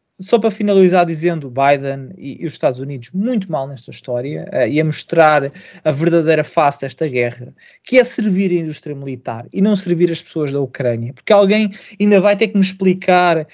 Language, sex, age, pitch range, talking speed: Portuguese, male, 20-39, 160-205 Hz, 190 wpm